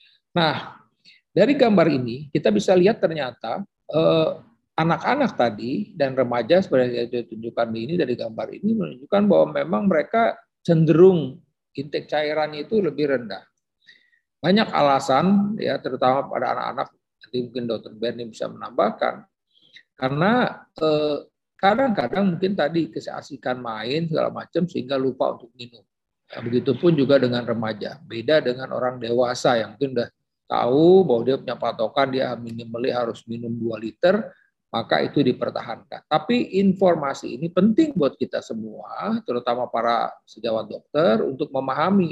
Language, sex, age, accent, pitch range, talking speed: Indonesian, male, 50-69, native, 120-185 Hz, 130 wpm